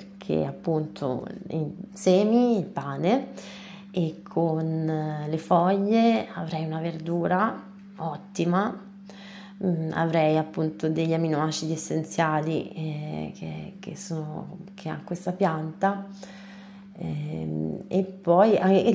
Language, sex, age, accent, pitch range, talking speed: Italian, female, 30-49, native, 160-195 Hz, 90 wpm